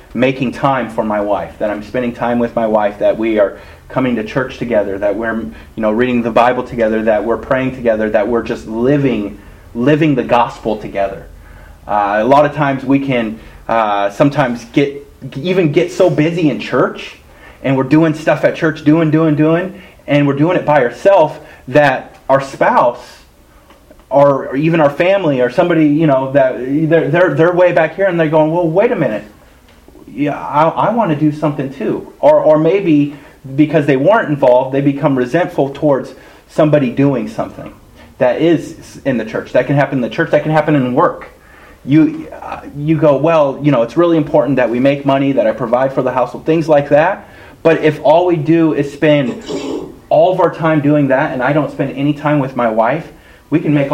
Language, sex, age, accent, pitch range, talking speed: English, male, 30-49, American, 120-155 Hz, 200 wpm